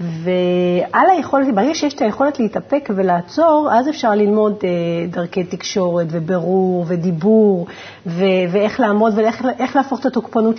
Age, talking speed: 40-59, 120 wpm